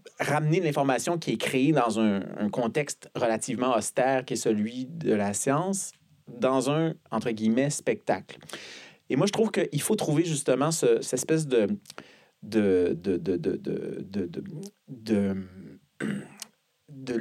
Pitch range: 110-155 Hz